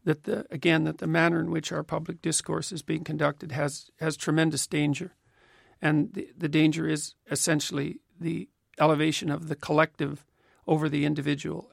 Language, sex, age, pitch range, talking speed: English, male, 50-69, 150-170 Hz, 165 wpm